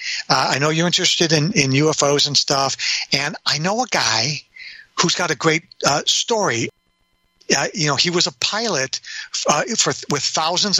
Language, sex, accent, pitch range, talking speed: English, male, American, 135-175 Hz, 180 wpm